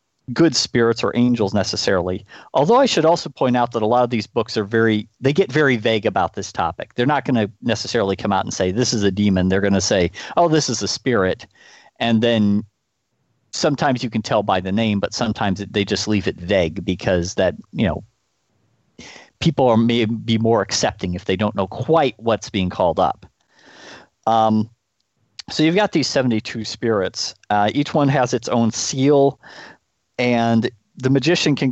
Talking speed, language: 190 wpm, English